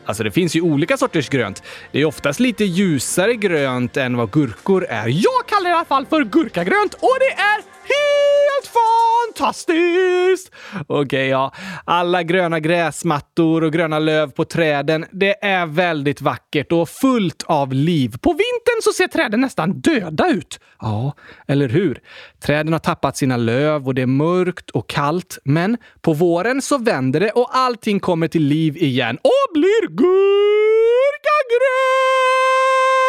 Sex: male